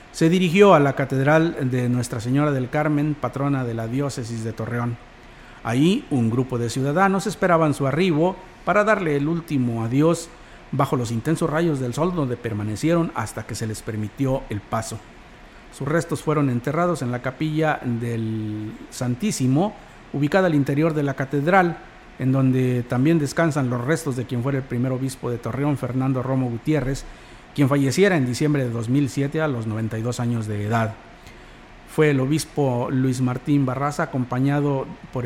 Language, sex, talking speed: Spanish, male, 165 wpm